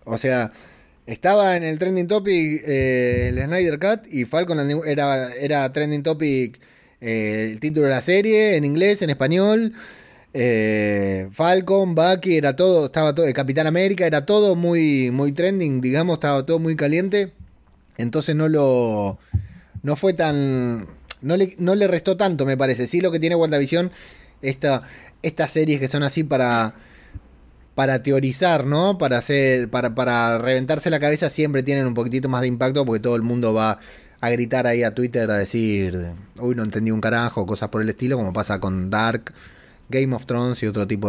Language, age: Spanish, 20-39